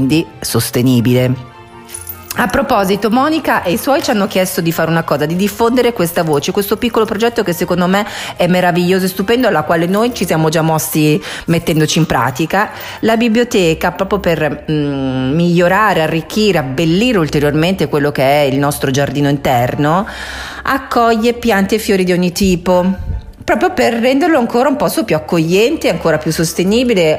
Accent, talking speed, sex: native, 155 wpm, female